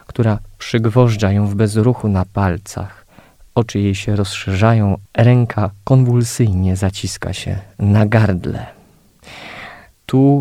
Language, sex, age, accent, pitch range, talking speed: Polish, male, 20-39, native, 100-115 Hz, 105 wpm